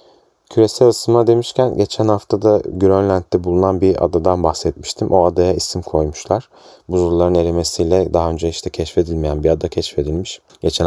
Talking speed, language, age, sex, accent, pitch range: 135 wpm, Turkish, 30-49, male, native, 80-95 Hz